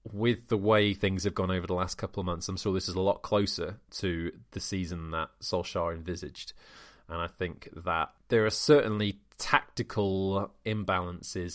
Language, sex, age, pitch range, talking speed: English, male, 30-49, 90-105 Hz, 175 wpm